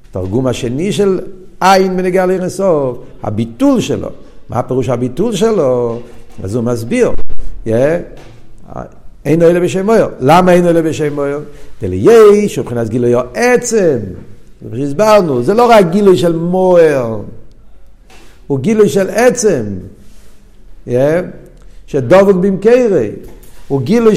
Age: 50-69